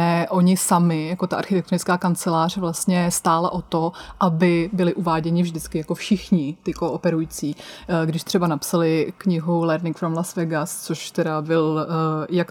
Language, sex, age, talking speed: Czech, female, 20-39, 145 wpm